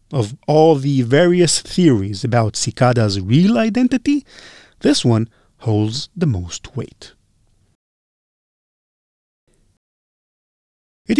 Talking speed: 85 wpm